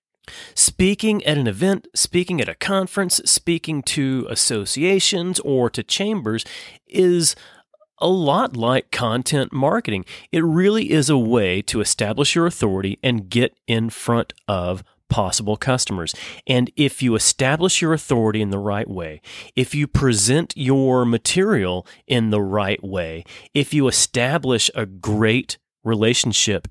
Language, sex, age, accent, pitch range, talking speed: English, male, 30-49, American, 105-145 Hz, 135 wpm